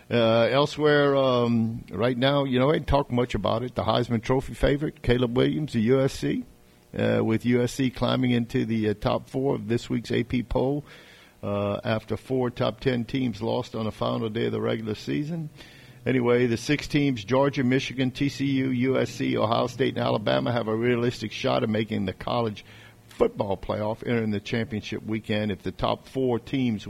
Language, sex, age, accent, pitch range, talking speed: English, male, 50-69, American, 105-125 Hz, 175 wpm